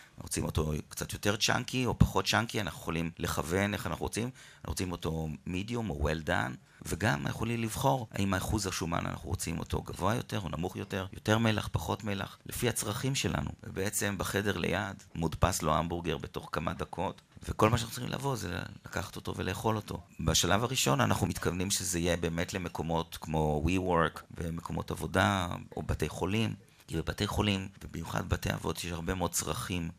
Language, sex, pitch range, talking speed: Hebrew, male, 80-105 Hz, 170 wpm